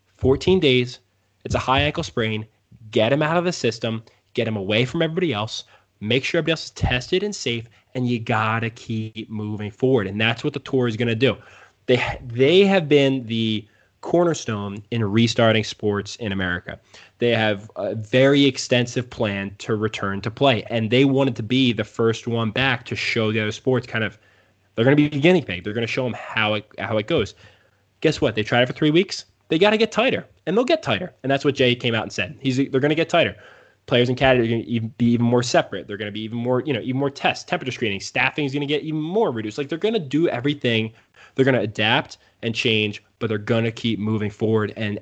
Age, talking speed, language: 20-39, 240 wpm, English